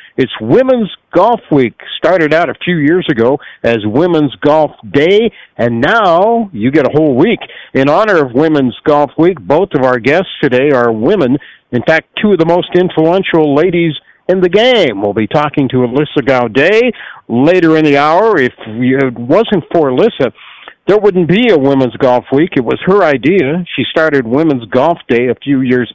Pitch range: 135-185 Hz